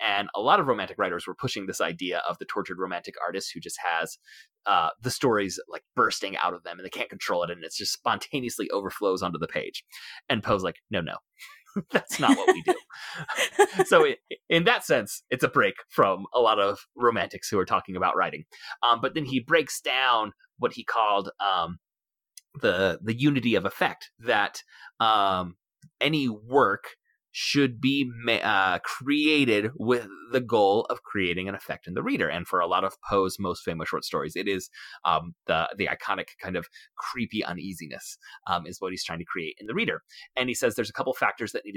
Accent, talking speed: American, 200 wpm